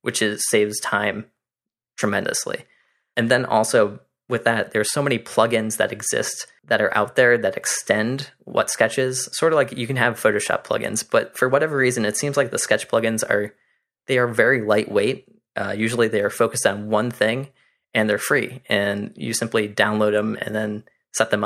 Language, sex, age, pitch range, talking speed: English, male, 20-39, 105-125 Hz, 185 wpm